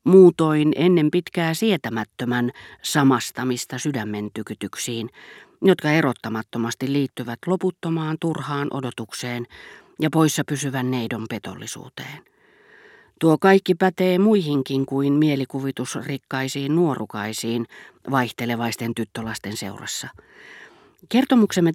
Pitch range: 120-160 Hz